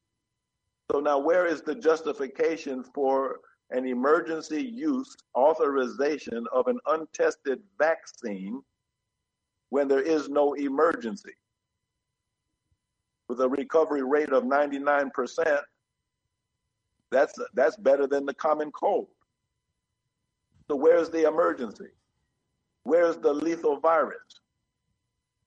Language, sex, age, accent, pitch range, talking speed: English, male, 50-69, American, 125-160 Hz, 95 wpm